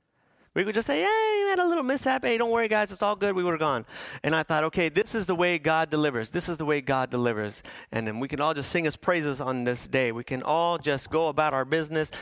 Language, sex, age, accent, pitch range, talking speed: English, male, 30-49, American, 115-160 Hz, 275 wpm